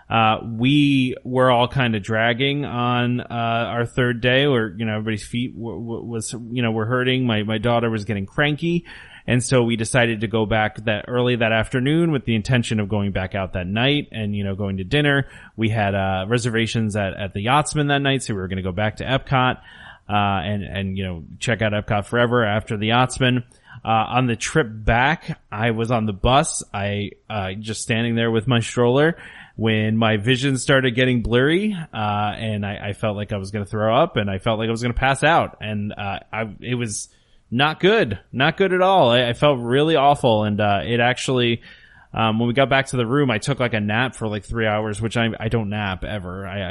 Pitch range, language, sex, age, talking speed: 105-125 Hz, English, male, 30-49, 225 wpm